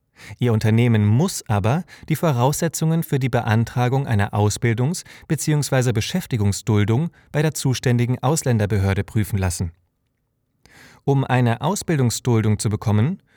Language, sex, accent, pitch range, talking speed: German, male, German, 105-130 Hz, 110 wpm